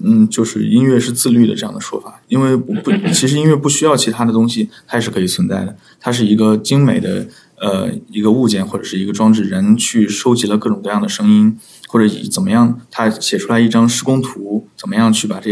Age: 20-39